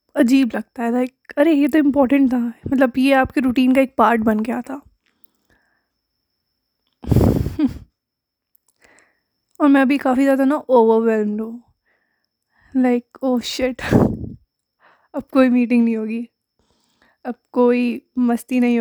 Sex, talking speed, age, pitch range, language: female, 125 wpm, 20-39, 240-275 Hz, Hindi